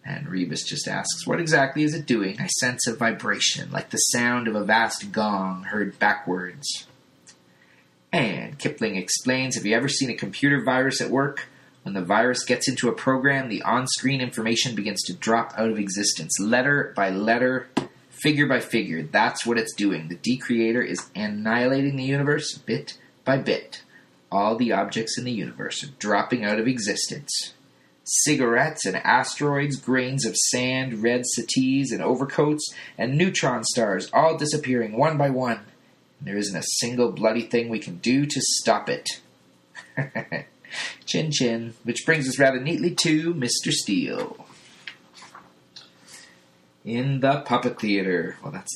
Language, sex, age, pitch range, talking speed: English, male, 30-49, 110-140 Hz, 155 wpm